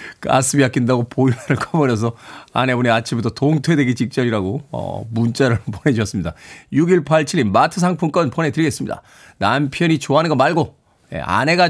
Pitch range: 125-180 Hz